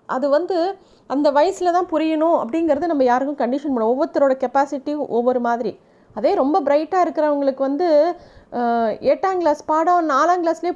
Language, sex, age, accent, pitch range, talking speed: Tamil, female, 30-49, native, 235-310 Hz, 140 wpm